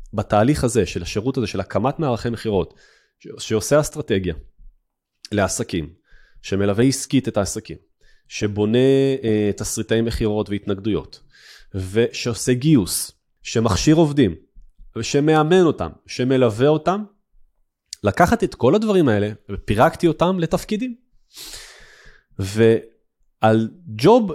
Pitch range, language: 100-135 Hz, Hebrew